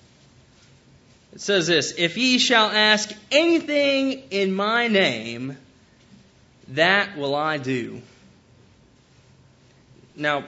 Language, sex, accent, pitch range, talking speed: English, male, American, 130-215 Hz, 90 wpm